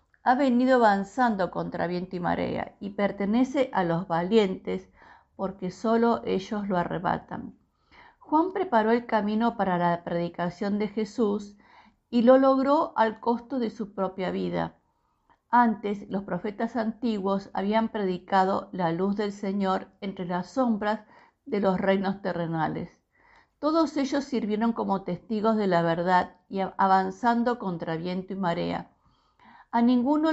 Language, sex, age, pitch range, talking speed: Spanish, female, 50-69, 185-235 Hz, 135 wpm